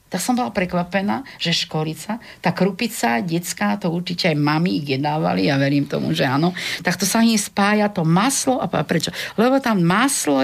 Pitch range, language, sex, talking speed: 155-185 Hz, Slovak, female, 180 wpm